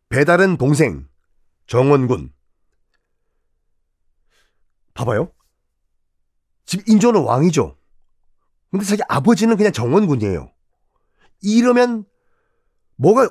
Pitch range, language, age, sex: 120-200 Hz, Korean, 40-59, male